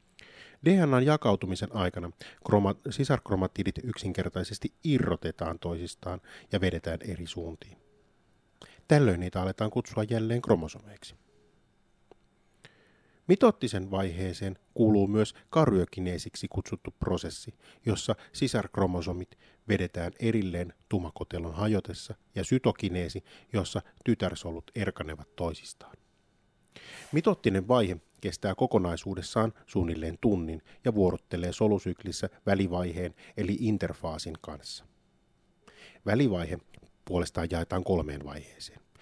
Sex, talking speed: male, 85 wpm